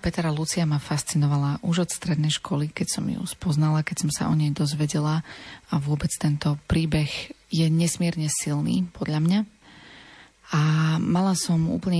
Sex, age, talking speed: female, 30-49, 155 wpm